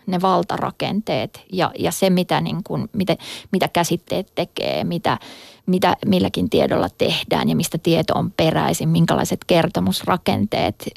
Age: 20-39